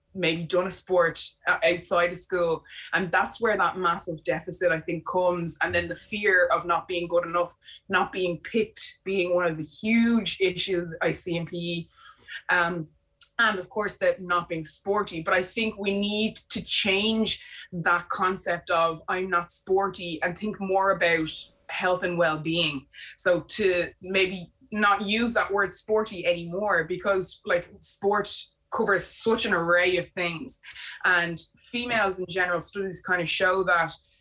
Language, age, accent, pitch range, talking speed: English, 20-39, Irish, 170-200 Hz, 165 wpm